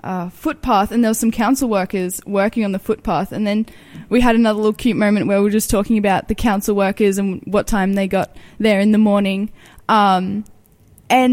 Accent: Australian